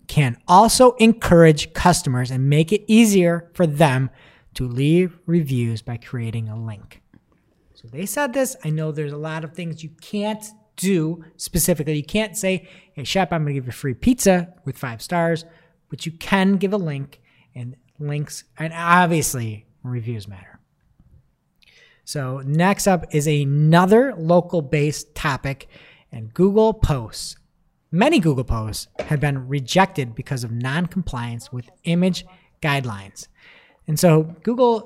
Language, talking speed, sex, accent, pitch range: English, 145 wpm, male, American, 135-180 Hz